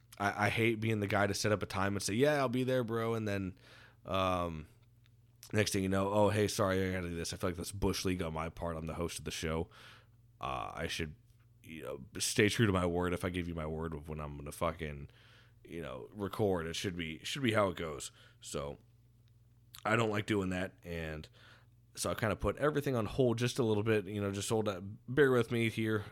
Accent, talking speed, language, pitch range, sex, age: American, 245 wpm, English, 85-115 Hz, male, 20-39